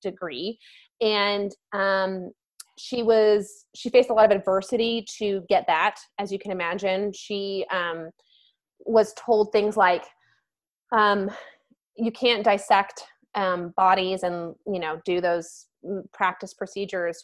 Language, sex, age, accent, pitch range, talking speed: English, female, 20-39, American, 190-230 Hz, 130 wpm